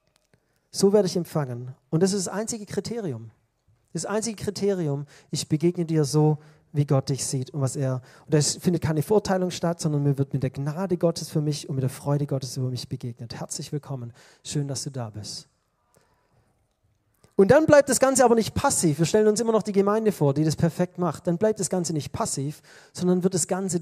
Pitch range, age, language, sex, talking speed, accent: 150-210 Hz, 40-59, German, male, 210 wpm, German